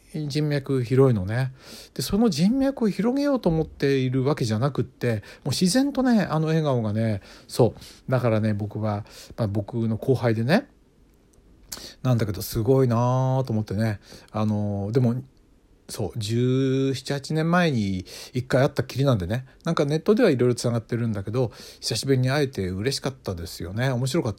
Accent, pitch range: native, 105-140 Hz